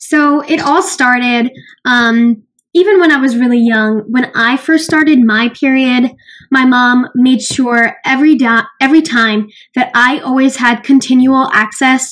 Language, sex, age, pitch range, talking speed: English, female, 10-29, 245-300 Hz, 155 wpm